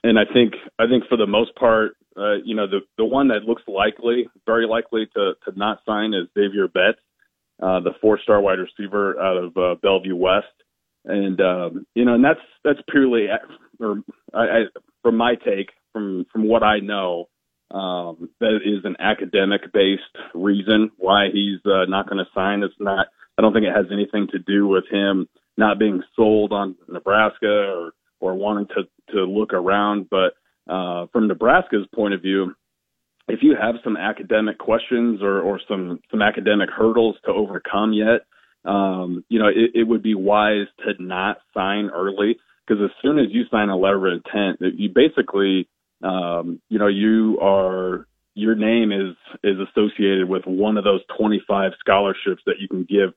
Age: 30-49